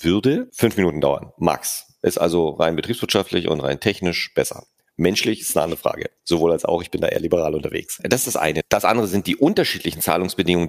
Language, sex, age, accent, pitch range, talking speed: German, male, 40-59, German, 80-95 Hz, 210 wpm